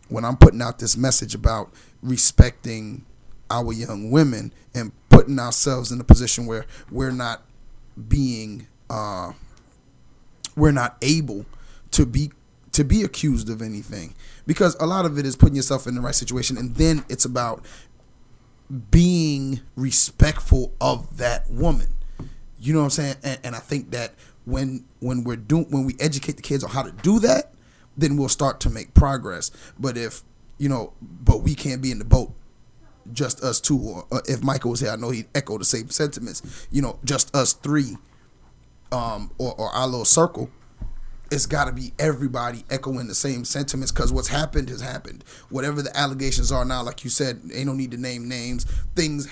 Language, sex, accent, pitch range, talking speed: English, male, American, 120-140 Hz, 180 wpm